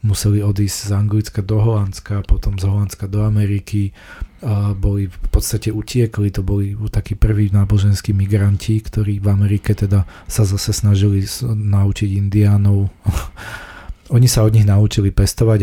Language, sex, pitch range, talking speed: Slovak, male, 100-110 Hz, 140 wpm